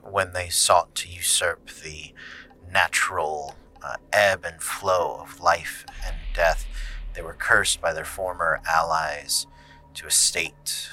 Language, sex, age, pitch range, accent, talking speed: English, male, 30-49, 75-95 Hz, American, 135 wpm